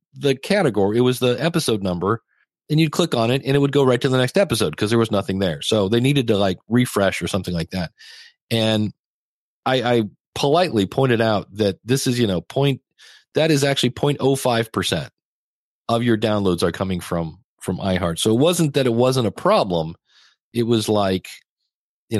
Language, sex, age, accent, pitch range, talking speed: English, male, 40-59, American, 105-140 Hz, 195 wpm